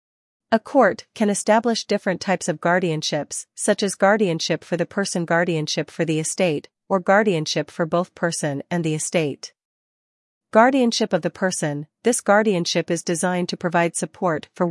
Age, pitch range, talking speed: 40-59, 160-195 Hz, 155 wpm